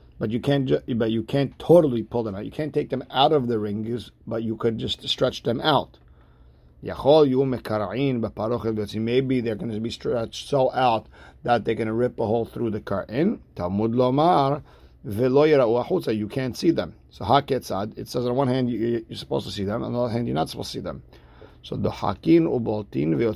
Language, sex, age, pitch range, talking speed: English, male, 50-69, 110-135 Hz, 170 wpm